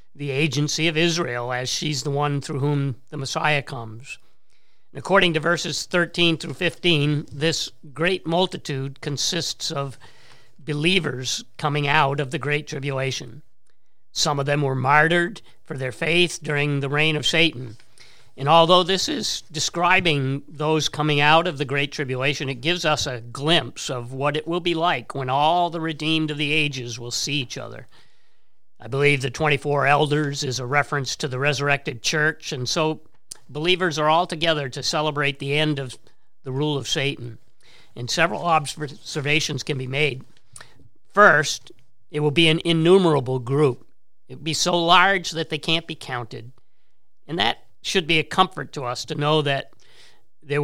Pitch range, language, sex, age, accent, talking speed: 135-160 Hz, English, male, 50-69, American, 165 wpm